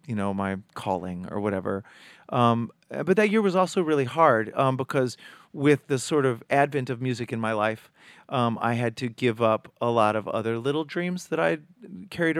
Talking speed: 200 wpm